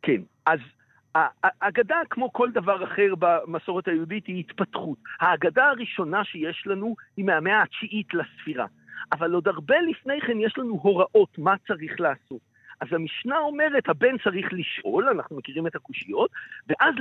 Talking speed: 145 wpm